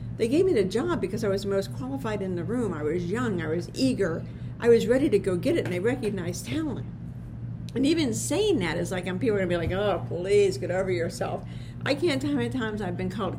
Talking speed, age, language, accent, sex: 265 wpm, 60-79, English, American, female